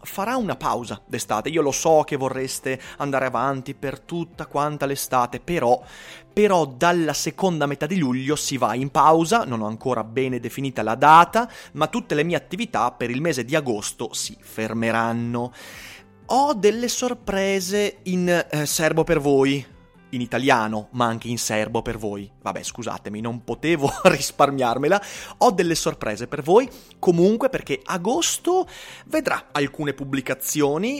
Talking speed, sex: 150 wpm, male